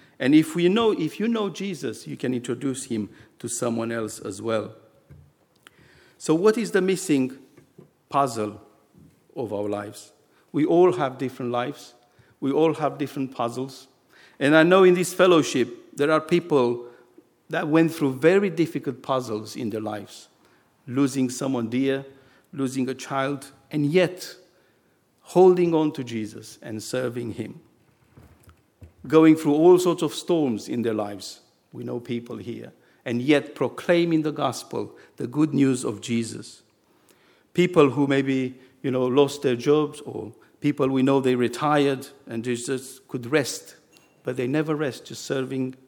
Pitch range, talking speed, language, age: 120-160 Hz, 150 wpm, English, 50-69